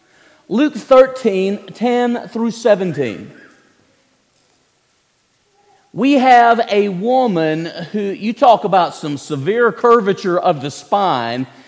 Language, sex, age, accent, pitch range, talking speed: English, male, 40-59, American, 145-245 Hz, 90 wpm